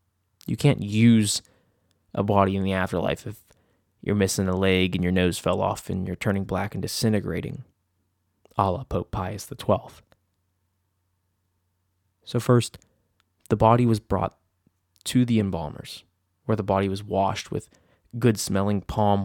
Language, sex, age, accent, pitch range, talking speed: English, male, 20-39, American, 95-110 Hz, 140 wpm